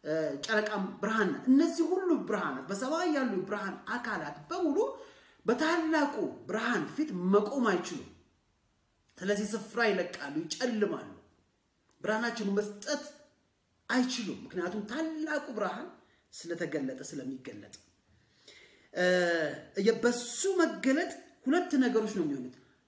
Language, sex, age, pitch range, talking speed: English, male, 30-49, 205-300 Hz, 70 wpm